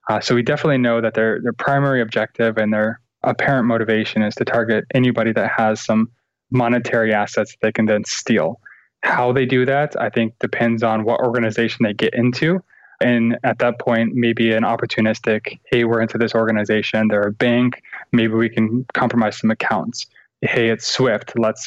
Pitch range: 110-125 Hz